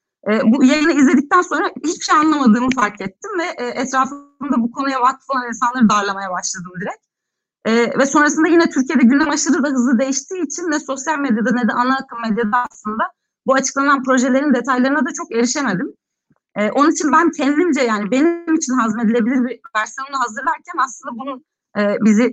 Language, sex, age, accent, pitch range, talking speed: Turkish, female, 30-49, native, 210-275 Hz, 165 wpm